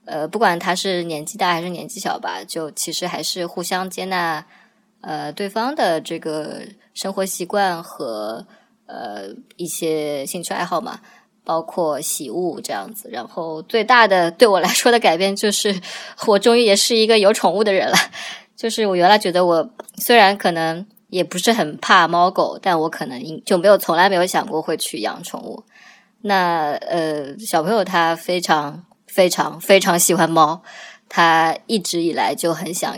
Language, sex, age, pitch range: Chinese, male, 20-39, 160-200 Hz